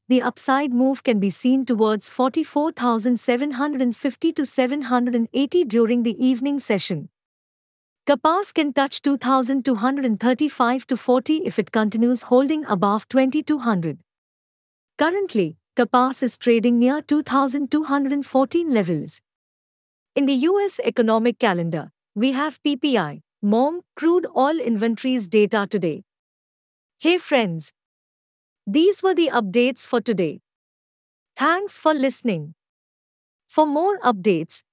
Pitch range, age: 225-290 Hz, 50-69